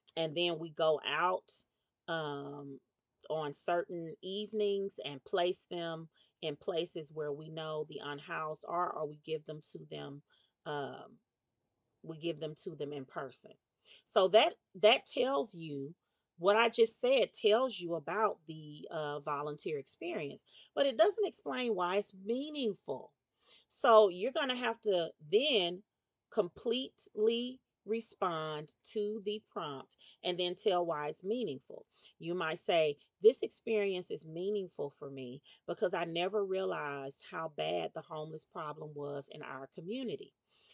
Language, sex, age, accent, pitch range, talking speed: English, female, 40-59, American, 155-210 Hz, 145 wpm